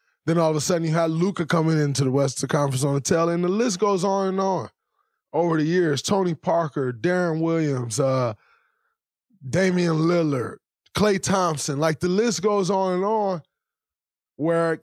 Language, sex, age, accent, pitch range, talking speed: English, male, 20-39, American, 150-190 Hz, 180 wpm